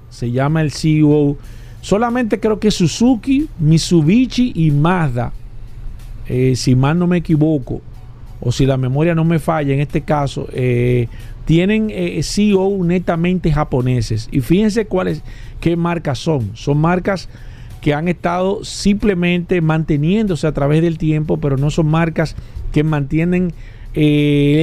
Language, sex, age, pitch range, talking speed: Spanish, male, 50-69, 135-175 Hz, 140 wpm